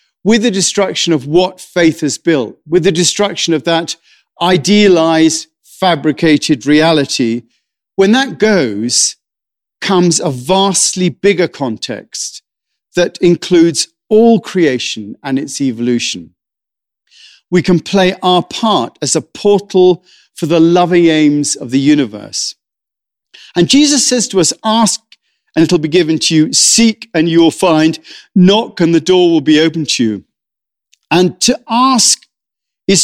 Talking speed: 135 wpm